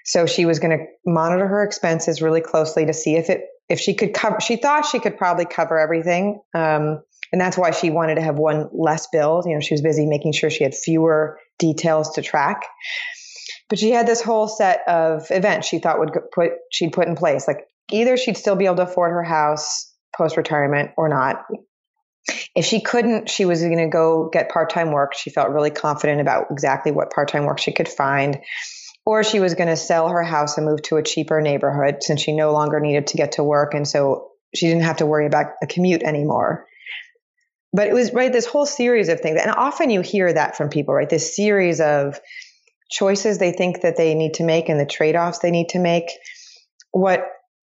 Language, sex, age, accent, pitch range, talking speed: English, female, 30-49, American, 155-205 Hz, 215 wpm